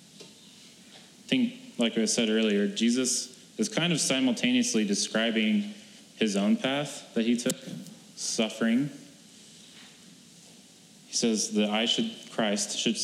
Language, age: English, 30-49